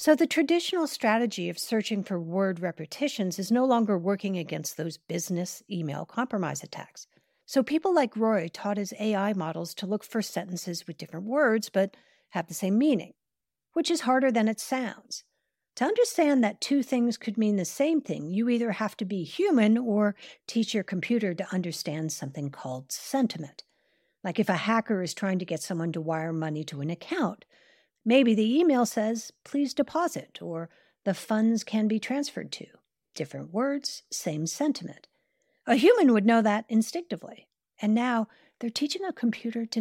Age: 50-69